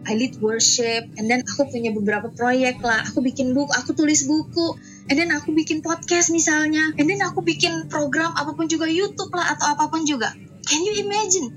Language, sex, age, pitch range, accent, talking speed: Indonesian, female, 20-39, 230-320 Hz, native, 190 wpm